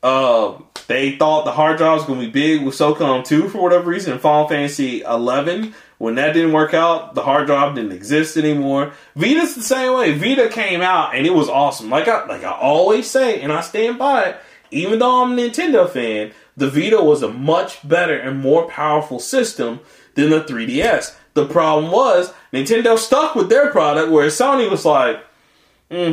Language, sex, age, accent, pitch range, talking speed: English, male, 20-39, American, 145-230 Hz, 195 wpm